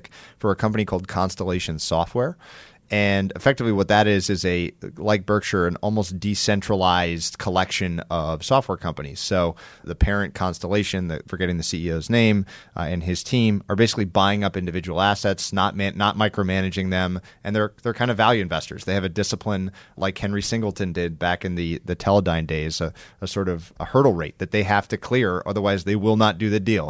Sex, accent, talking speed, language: male, American, 190 wpm, English